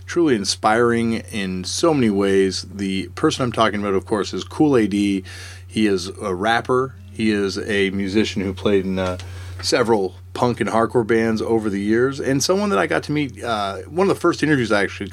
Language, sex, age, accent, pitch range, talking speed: English, male, 30-49, American, 95-120 Hz, 200 wpm